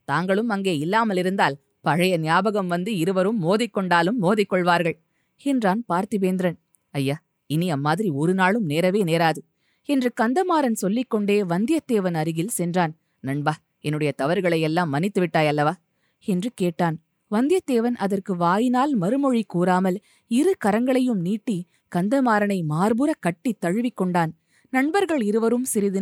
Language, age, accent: Tamil, 20-39, native